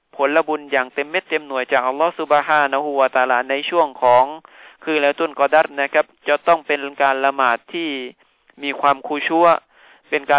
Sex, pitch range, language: male, 135-155 Hz, Thai